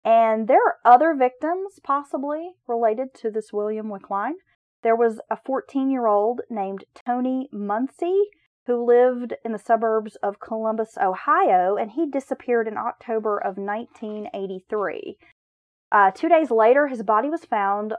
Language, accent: English, American